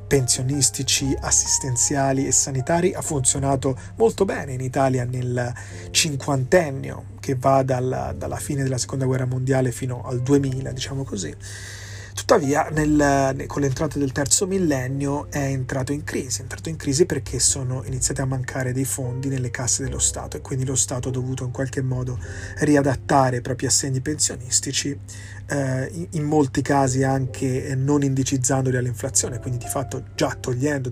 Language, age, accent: Italian, 30-49, native